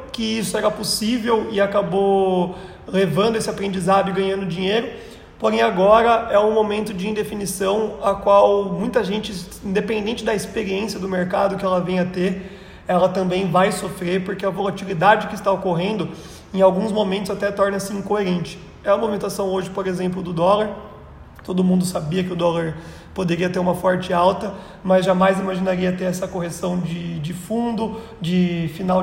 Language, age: Portuguese, 30-49